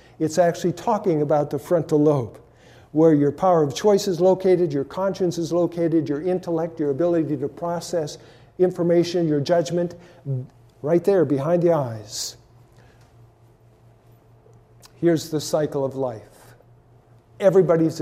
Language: English